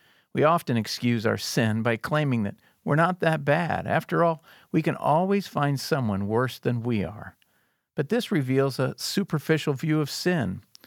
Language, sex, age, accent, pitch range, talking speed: English, male, 50-69, American, 115-150 Hz, 170 wpm